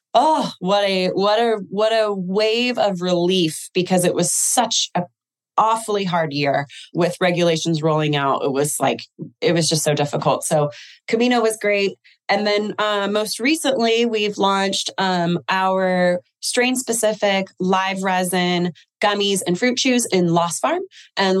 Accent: American